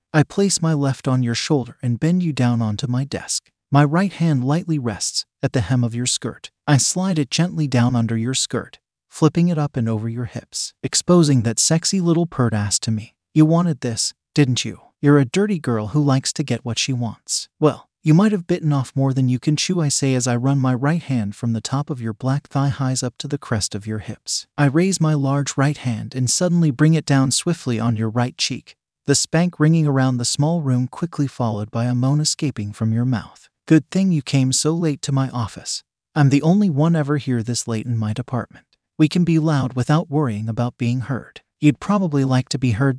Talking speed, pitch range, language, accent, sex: 230 wpm, 120-155 Hz, English, American, male